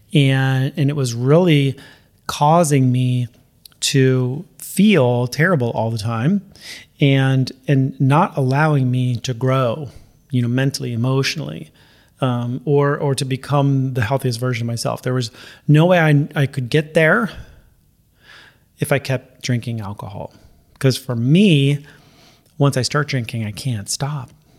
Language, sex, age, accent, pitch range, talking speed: English, male, 30-49, American, 125-145 Hz, 140 wpm